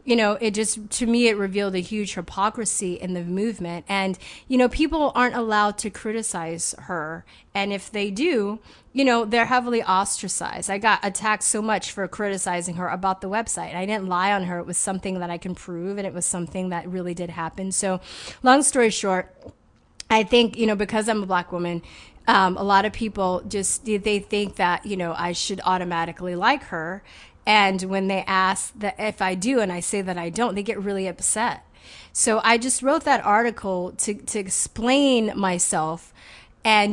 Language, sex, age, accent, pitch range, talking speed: English, female, 30-49, American, 190-255 Hz, 195 wpm